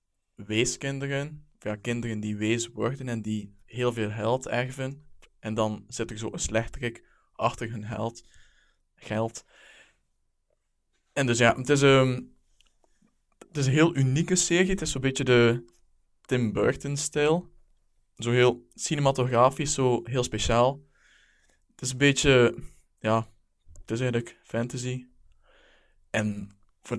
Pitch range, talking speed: 105-125 Hz, 130 wpm